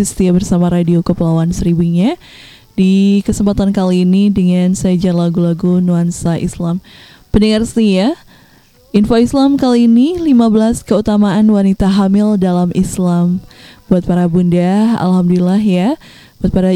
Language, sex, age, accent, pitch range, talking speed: Indonesian, female, 10-29, native, 180-220 Hz, 120 wpm